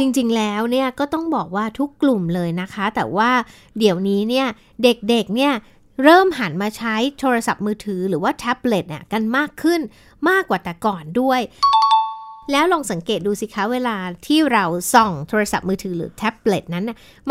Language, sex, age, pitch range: Thai, female, 60-79, 205-280 Hz